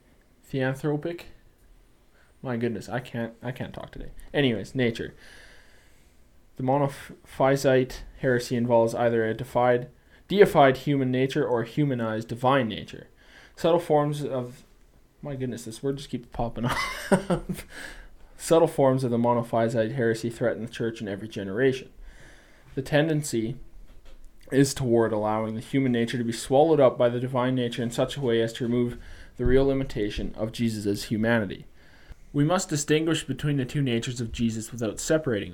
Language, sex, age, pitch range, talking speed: English, male, 20-39, 115-140 Hz, 150 wpm